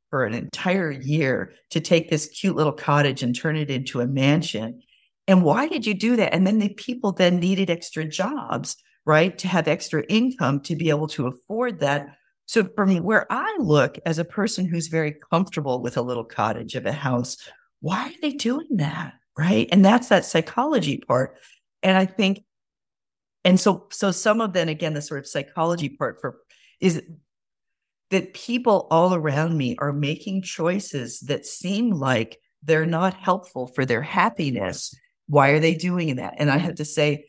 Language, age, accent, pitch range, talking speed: English, 50-69, American, 145-185 Hz, 185 wpm